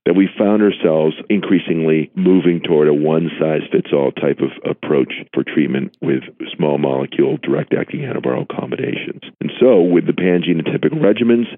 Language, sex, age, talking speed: English, male, 50-69, 130 wpm